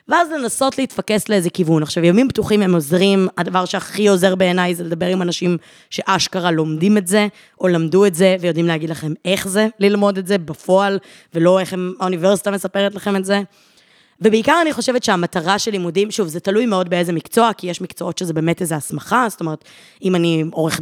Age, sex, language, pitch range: 20-39, female, Hebrew, 175-215 Hz